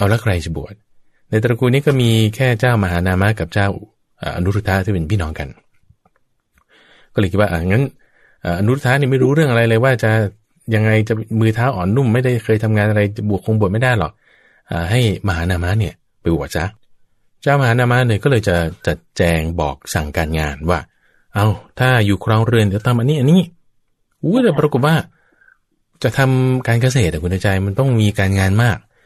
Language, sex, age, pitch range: English, male, 20-39, 90-125 Hz